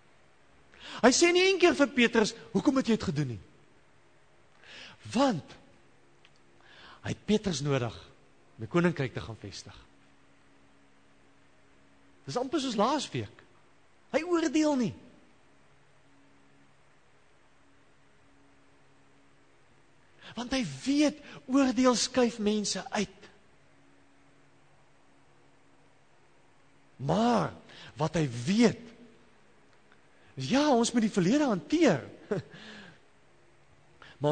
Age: 50-69